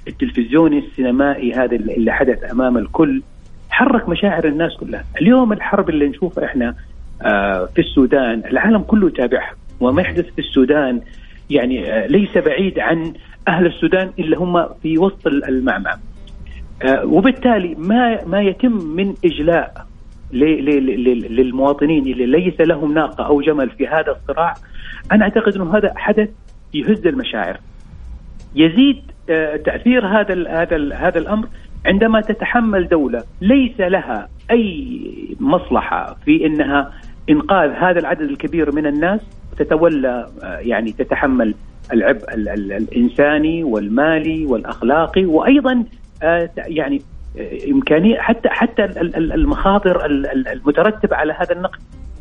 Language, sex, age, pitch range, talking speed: Arabic, male, 40-59, 140-215 Hz, 110 wpm